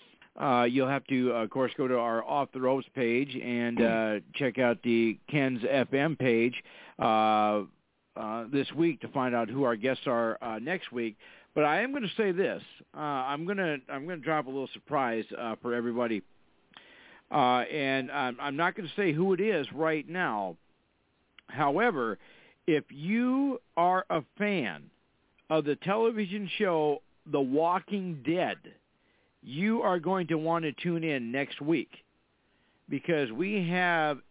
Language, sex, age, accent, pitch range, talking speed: English, male, 50-69, American, 120-170 Hz, 165 wpm